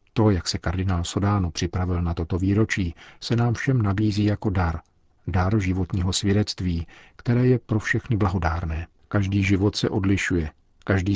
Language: Czech